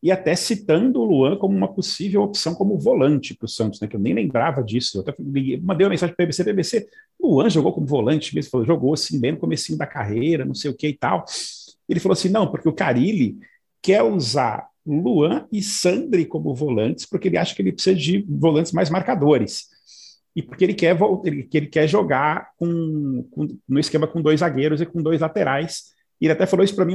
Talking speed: 205 wpm